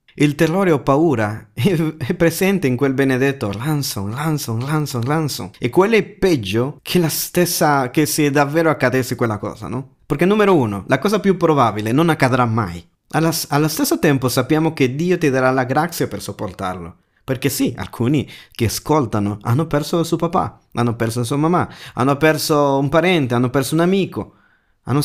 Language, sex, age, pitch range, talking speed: Italian, male, 30-49, 120-165 Hz, 175 wpm